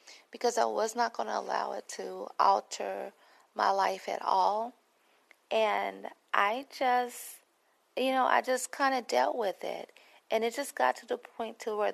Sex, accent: female, American